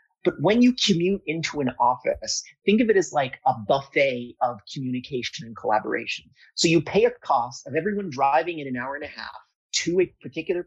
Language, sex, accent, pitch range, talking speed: English, male, American, 125-165 Hz, 195 wpm